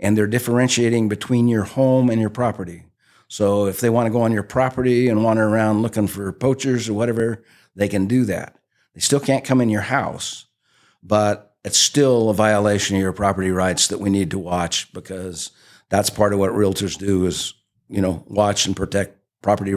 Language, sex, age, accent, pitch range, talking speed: English, male, 50-69, American, 100-110 Hz, 195 wpm